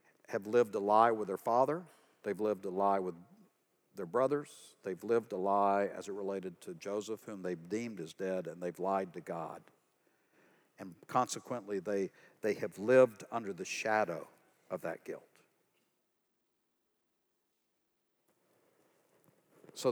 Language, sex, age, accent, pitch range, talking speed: English, male, 60-79, American, 95-115 Hz, 140 wpm